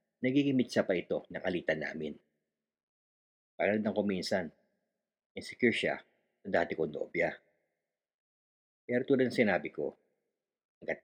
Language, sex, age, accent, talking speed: Filipino, male, 50-69, native, 100 wpm